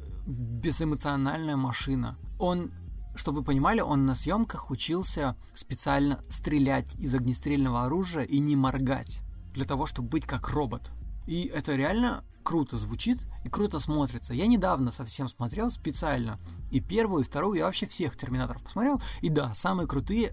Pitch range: 120-150 Hz